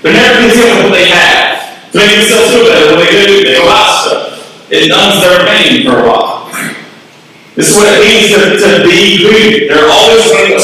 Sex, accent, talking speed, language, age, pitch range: male, American, 215 wpm, English, 40-59, 145-220 Hz